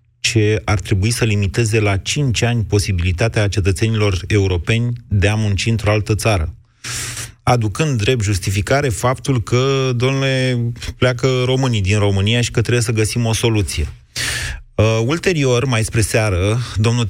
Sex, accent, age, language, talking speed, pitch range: male, native, 30-49, Romanian, 140 wpm, 100-120 Hz